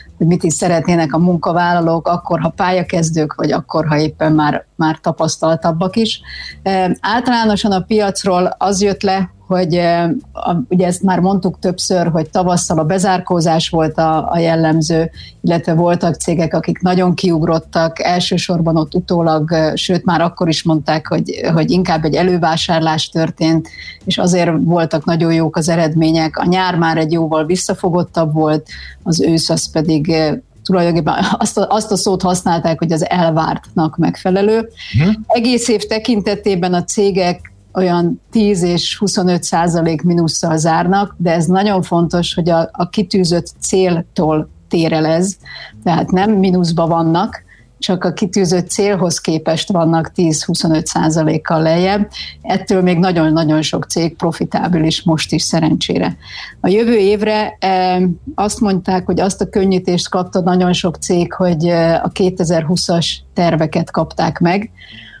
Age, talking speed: 30-49, 135 wpm